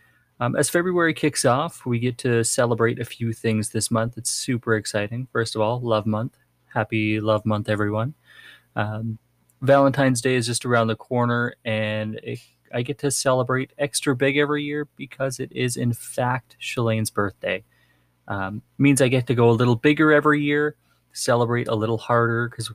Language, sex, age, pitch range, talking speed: English, male, 20-39, 100-125 Hz, 175 wpm